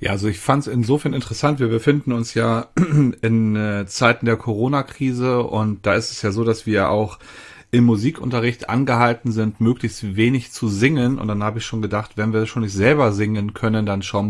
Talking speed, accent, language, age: 195 wpm, German, German, 40-59